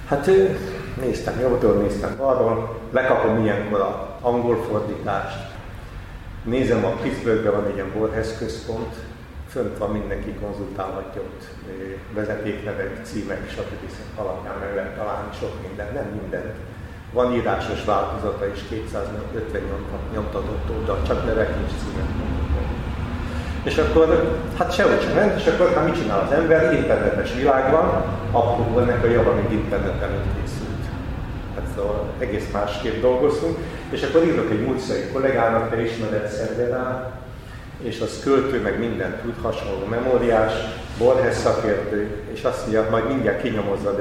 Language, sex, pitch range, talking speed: Hungarian, male, 100-120 Hz, 130 wpm